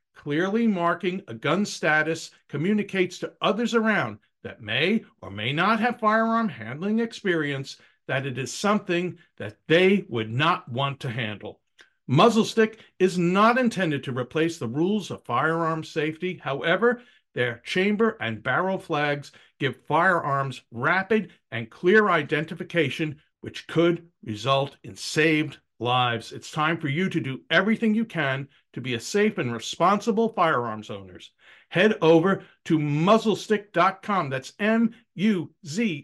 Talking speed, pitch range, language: 140 wpm, 135-195 Hz, English